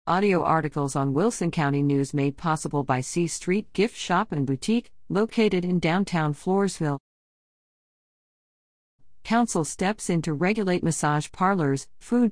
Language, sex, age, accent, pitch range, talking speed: English, female, 50-69, American, 145-190 Hz, 130 wpm